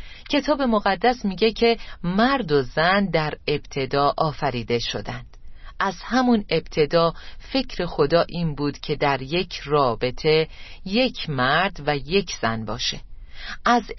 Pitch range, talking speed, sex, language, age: 140-205 Hz, 125 wpm, female, Persian, 40-59